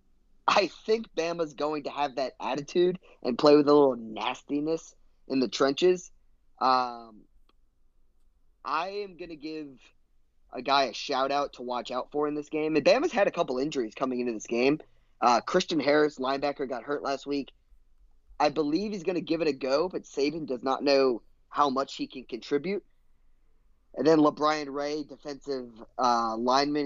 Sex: male